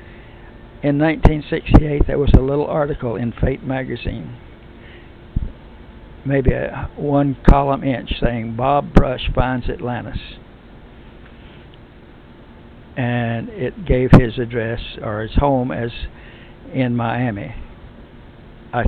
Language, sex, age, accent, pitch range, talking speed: English, male, 60-79, American, 115-135 Hz, 100 wpm